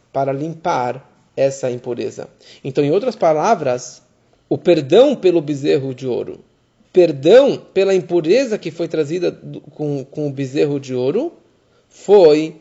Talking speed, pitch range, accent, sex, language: 130 wpm, 135-195 Hz, Brazilian, male, Portuguese